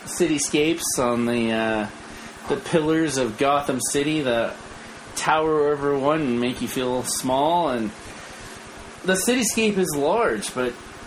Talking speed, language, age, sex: 125 wpm, English, 30-49, male